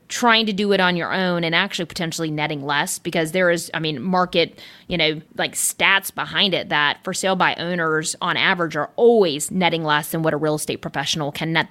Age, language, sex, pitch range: 30-49, English, female, 160-195 Hz